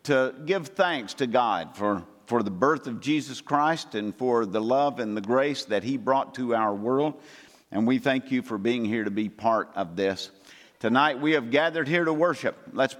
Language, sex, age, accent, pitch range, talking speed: English, male, 50-69, American, 110-155 Hz, 210 wpm